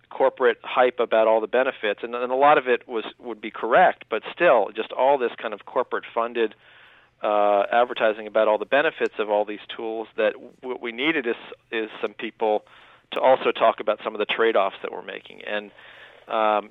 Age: 40-59